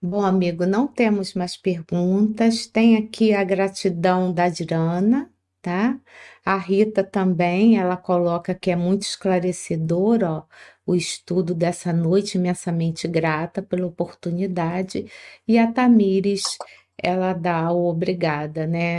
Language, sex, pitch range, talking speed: Portuguese, female, 175-215 Hz, 125 wpm